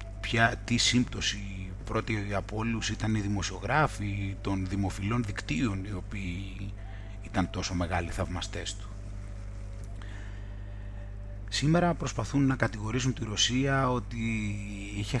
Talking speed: 105 wpm